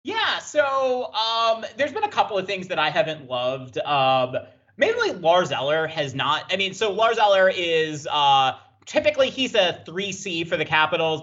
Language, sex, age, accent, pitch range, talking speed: English, male, 30-49, American, 140-200 Hz, 175 wpm